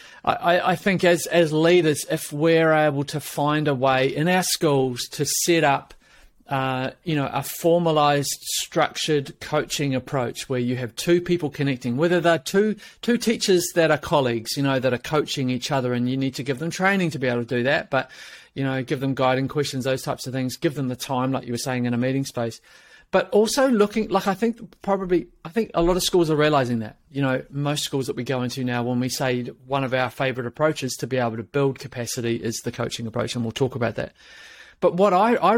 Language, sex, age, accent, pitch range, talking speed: English, male, 40-59, Australian, 125-160 Hz, 230 wpm